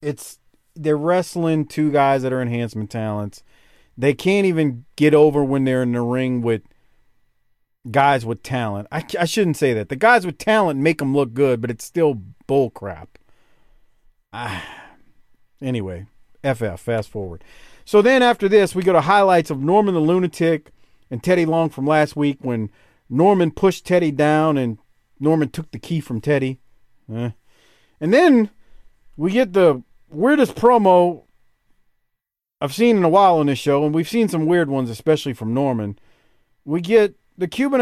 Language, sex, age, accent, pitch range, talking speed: English, male, 40-59, American, 130-185 Hz, 165 wpm